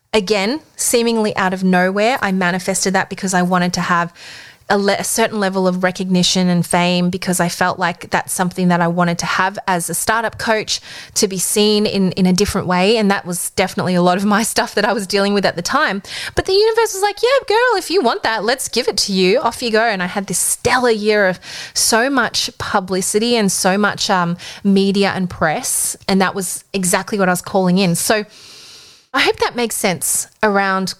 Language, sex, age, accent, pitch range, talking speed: English, female, 20-39, Australian, 180-215 Hz, 220 wpm